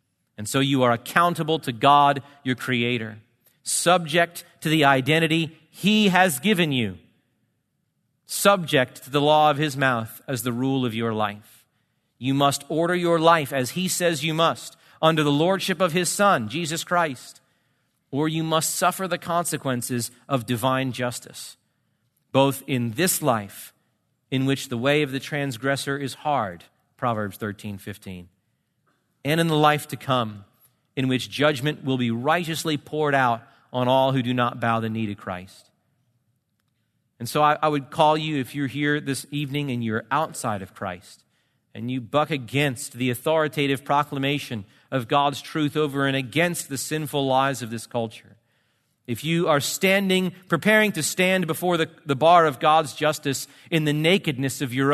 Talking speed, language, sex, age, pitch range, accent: 165 wpm, English, male, 40-59, 125-160 Hz, American